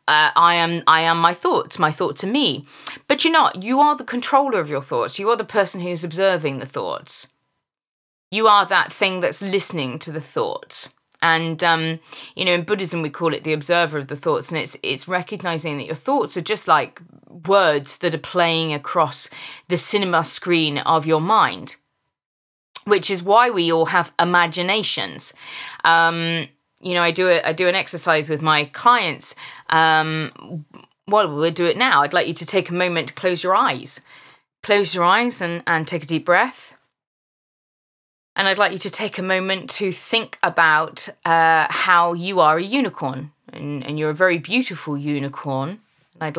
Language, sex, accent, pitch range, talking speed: English, female, British, 155-190 Hz, 185 wpm